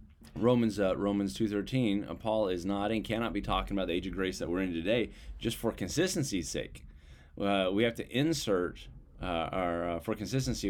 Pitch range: 85-110 Hz